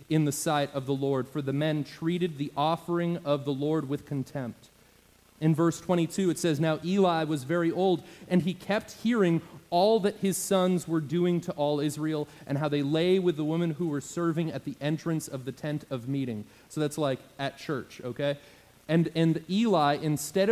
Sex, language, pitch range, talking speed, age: male, English, 140-175 Hz, 200 wpm, 30-49